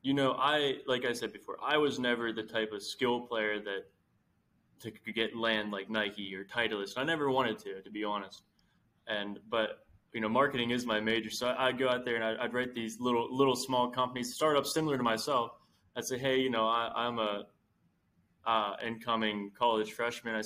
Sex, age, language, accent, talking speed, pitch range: male, 10-29, English, American, 200 wpm, 110-125 Hz